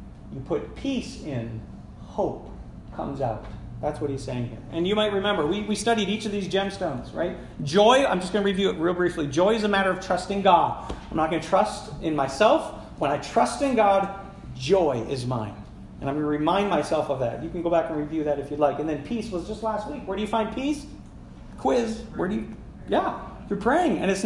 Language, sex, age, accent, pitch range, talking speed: English, male, 40-59, American, 145-215 Hz, 235 wpm